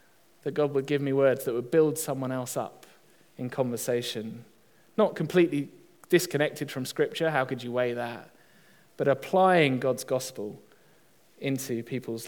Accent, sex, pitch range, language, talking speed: British, male, 125-145 Hz, English, 145 wpm